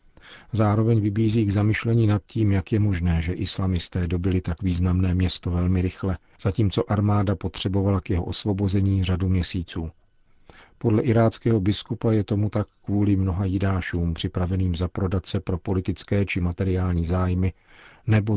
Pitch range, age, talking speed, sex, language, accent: 90-105 Hz, 50-69, 145 wpm, male, Czech, native